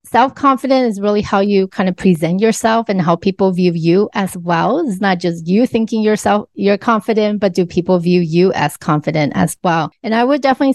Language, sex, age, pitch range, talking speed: English, female, 30-49, 190-250 Hz, 205 wpm